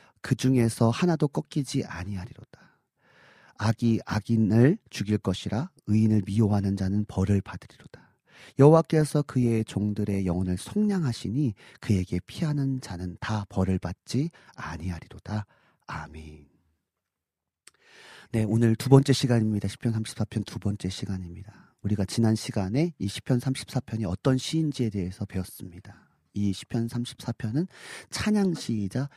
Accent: native